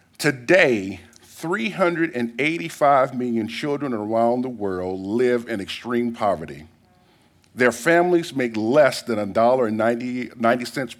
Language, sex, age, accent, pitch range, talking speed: English, male, 50-69, American, 115-160 Hz, 95 wpm